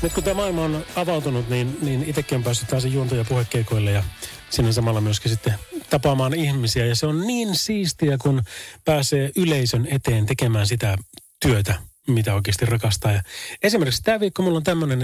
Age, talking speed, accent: 30-49, 175 wpm, native